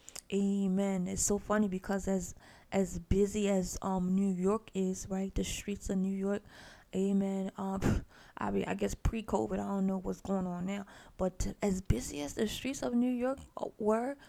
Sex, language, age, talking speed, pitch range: female, English, 20-39, 180 wpm, 195-230 Hz